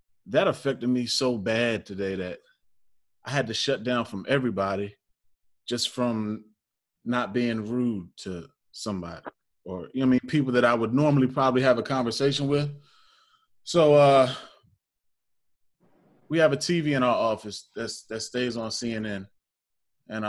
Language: English